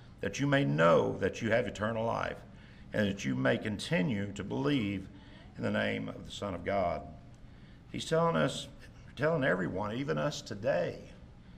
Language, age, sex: English, 60-79, male